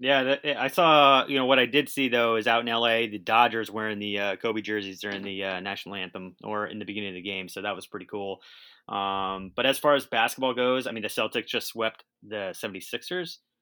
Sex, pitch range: male, 100-125 Hz